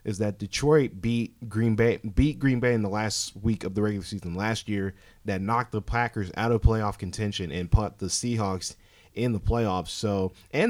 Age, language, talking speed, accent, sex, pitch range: 20-39, English, 200 wpm, American, male, 95-115 Hz